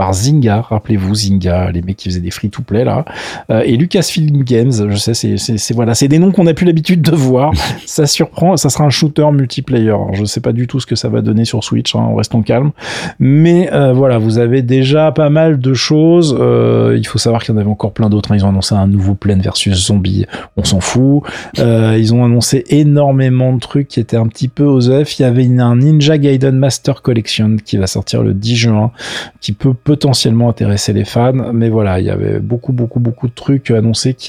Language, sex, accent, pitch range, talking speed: French, male, French, 100-135 Hz, 235 wpm